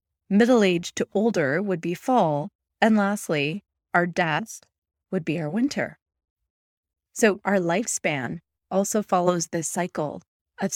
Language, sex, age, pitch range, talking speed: English, female, 30-49, 160-205 Hz, 130 wpm